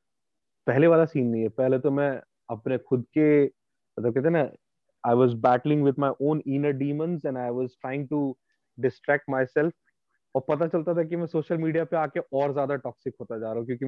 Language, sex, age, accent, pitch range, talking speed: Hindi, male, 30-49, native, 130-165 Hz, 145 wpm